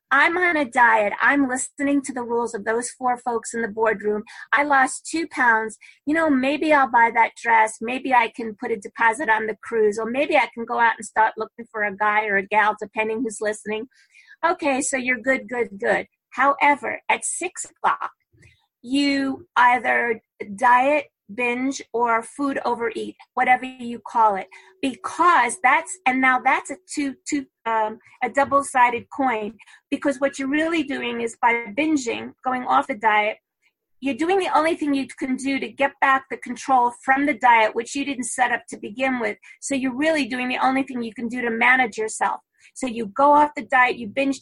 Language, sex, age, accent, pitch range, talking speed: English, female, 40-59, American, 230-280 Hz, 195 wpm